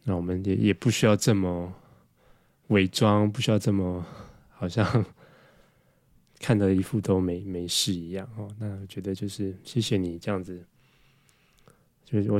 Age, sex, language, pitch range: 20-39, male, Chinese, 95-120 Hz